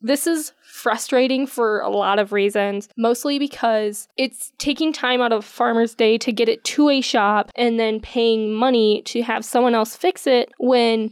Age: 10-29